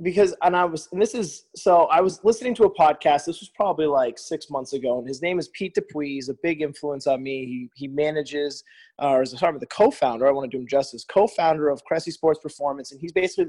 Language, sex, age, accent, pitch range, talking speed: English, male, 20-39, American, 140-175 Hz, 255 wpm